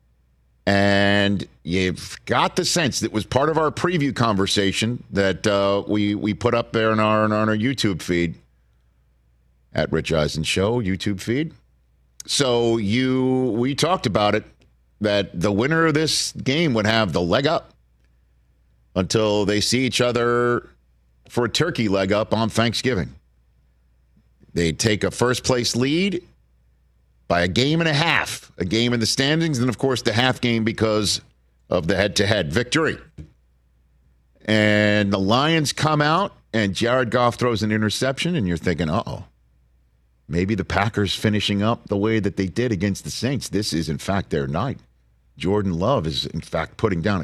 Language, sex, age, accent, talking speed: English, male, 50-69, American, 165 wpm